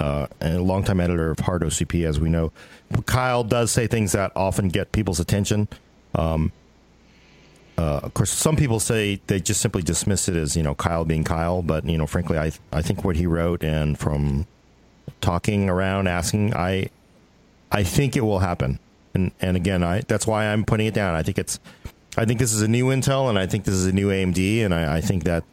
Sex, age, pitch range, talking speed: male, 40-59, 90-120 Hz, 220 wpm